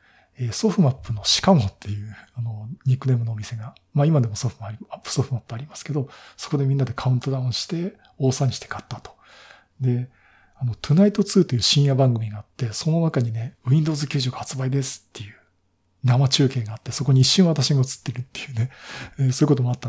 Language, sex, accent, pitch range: Japanese, male, native, 125-155 Hz